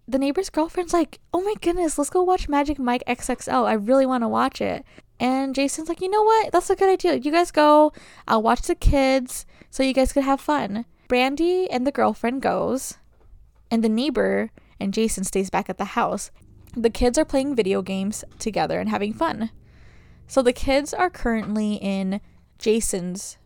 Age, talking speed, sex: 10-29, 190 wpm, female